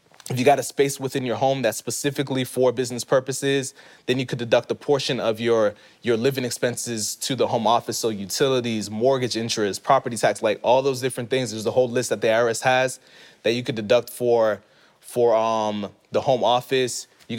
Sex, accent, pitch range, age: male, American, 115-130 Hz, 20-39